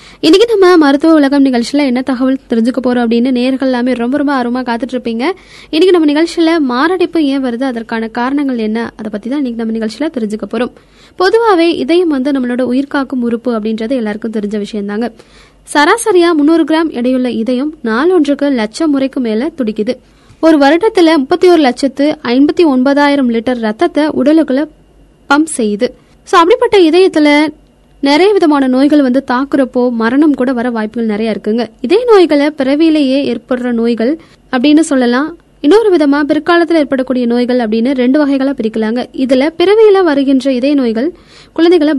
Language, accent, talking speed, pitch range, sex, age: Tamil, native, 95 wpm, 245-320 Hz, female, 20-39